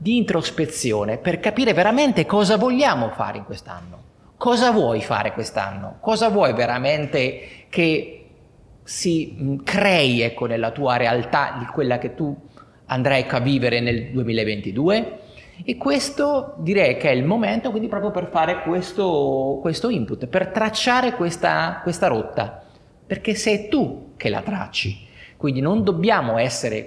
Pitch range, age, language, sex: 120-205 Hz, 30-49, Italian, male